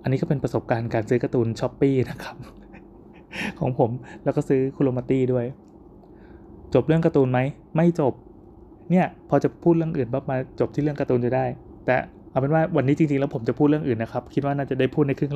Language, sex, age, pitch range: Thai, male, 20-39, 125-155 Hz